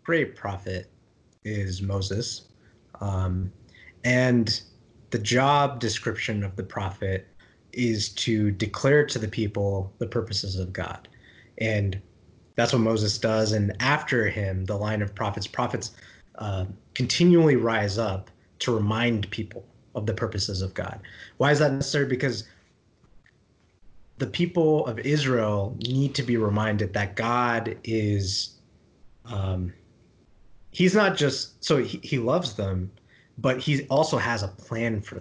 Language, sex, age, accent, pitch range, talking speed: English, male, 20-39, American, 100-125 Hz, 135 wpm